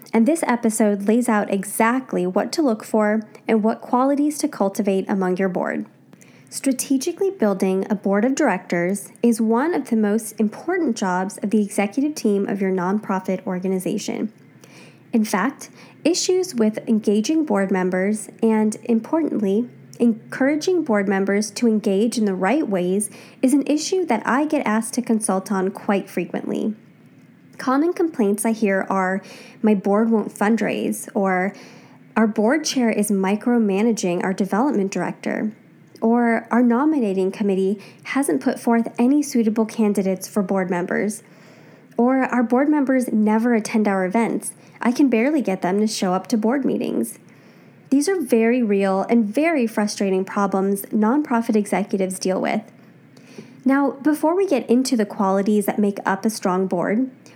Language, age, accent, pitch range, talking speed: English, 10-29, American, 200-245 Hz, 150 wpm